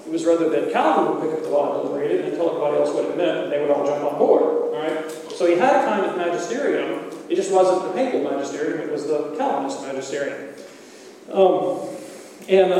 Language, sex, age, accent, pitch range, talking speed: English, male, 40-59, American, 170-265 Hz, 230 wpm